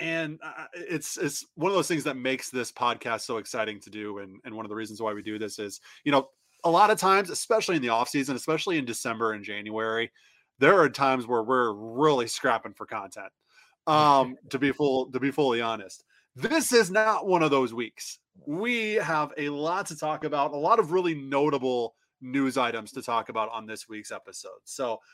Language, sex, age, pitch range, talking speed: English, male, 20-39, 125-175 Hz, 210 wpm